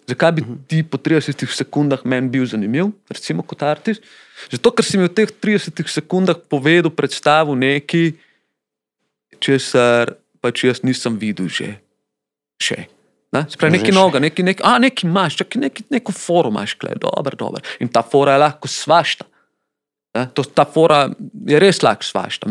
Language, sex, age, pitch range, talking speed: Slovak, male, 30-49, 125-165 Hz, 155 wpm